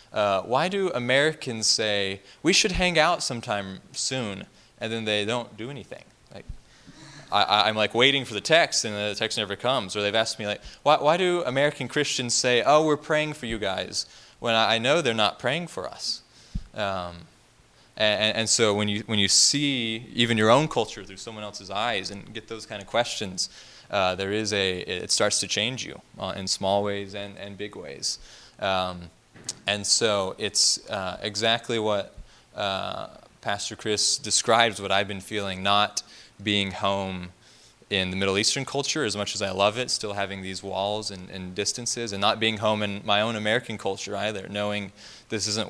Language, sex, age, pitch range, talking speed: English, male, 20-39, 100-115 Hz, 190 wpm